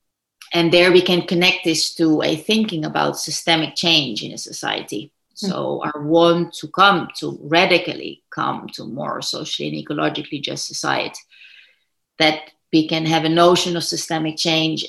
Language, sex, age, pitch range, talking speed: English, female, 30-49, 155-185 Hz, 155 wpm